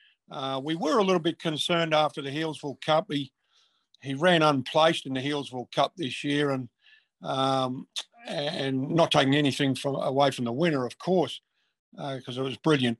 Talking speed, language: 180 wpm, English